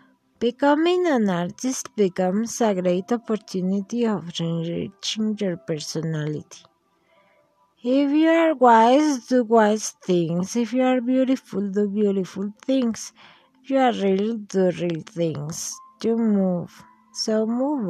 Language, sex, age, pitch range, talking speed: English, female, 50-69, 190-245 Hz, 120 wpm